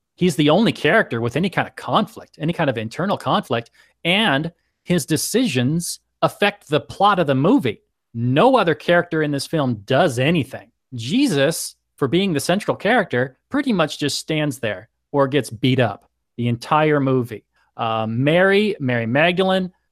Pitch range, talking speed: 120-165 Hz, 160 wpm